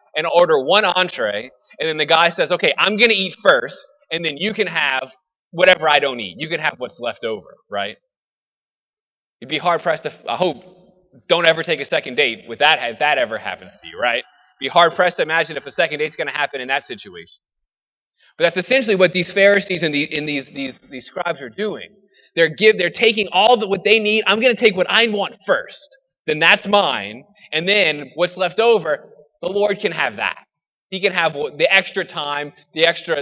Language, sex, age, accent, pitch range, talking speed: English, male, 20-39, American, 165-220 Hz, 215 wpm